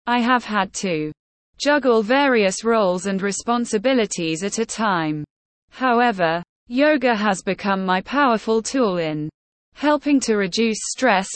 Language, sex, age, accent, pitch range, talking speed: English, female, 20-39, British, 180-245 Hz, 125 wpm